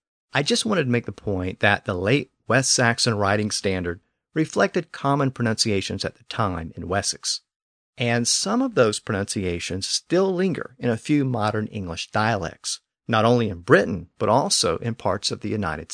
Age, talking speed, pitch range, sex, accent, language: 50-69, 175 wpm, 100-145 Hz, male, American, English